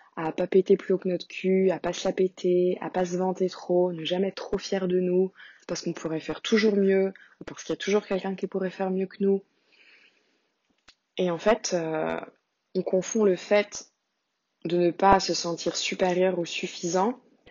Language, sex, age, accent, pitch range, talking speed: French, female, 20-39, French, 175-200 Hz, 200 wpm